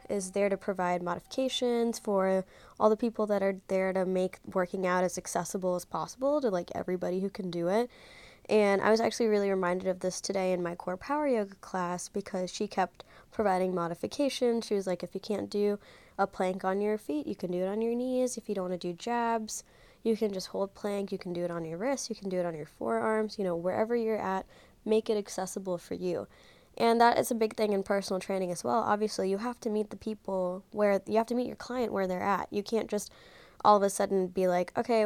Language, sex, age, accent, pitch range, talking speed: English, female, 20-39, American, 185-225 Hz, 240 wpm